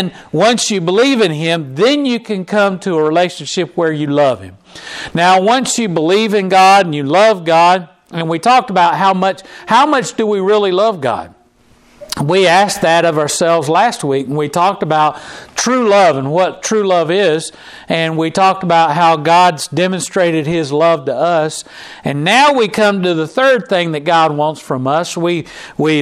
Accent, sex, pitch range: American, male, 155-200 Hz